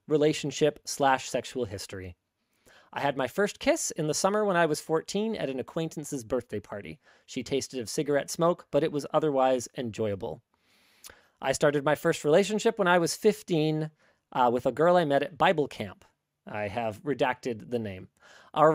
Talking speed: 175 wpm